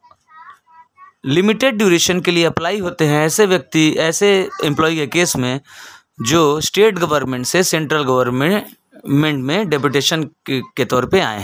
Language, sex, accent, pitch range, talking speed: Hindi, male, native, 150-230 Hz, 135 wpm